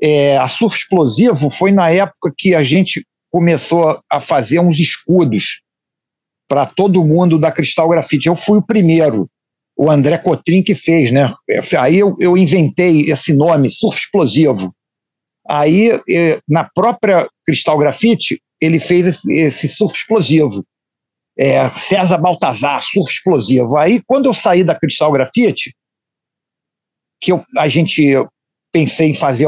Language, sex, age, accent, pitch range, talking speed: Portuguese, male, 50-69, Brazilian, 150-200 Hz, 135 wpm